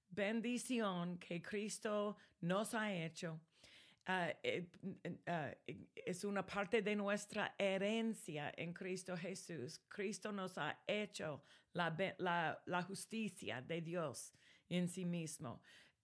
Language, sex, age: English, female, 40-59